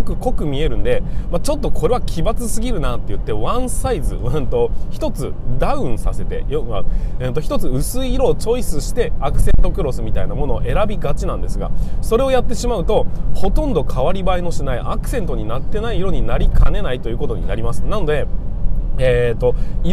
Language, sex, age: Japanese, male, 20-39